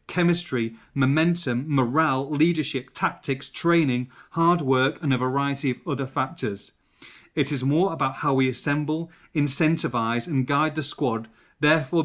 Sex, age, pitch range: male, 30-49, 125-150 Hz